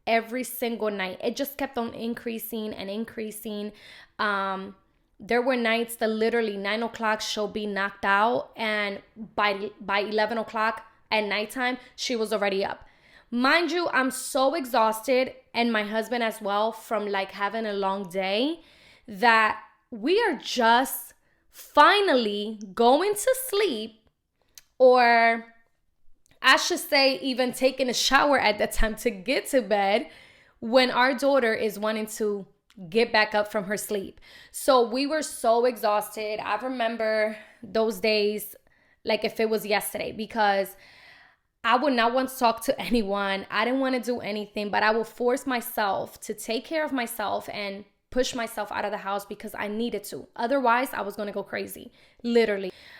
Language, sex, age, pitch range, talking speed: English, female, 10-29, 210-250 Hz, 160 wpm